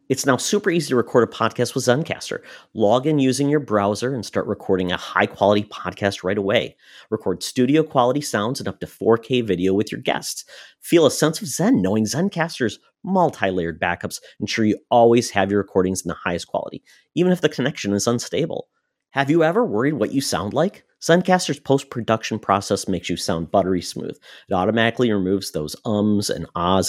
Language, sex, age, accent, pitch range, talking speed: English, male, 40-59, American, 95-140 Hz, 185 wpm